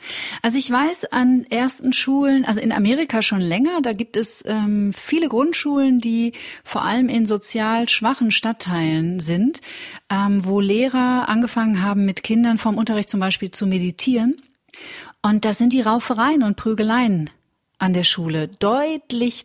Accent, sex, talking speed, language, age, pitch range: German, female, 150 wpm, German, 40-59, 190-235 Hz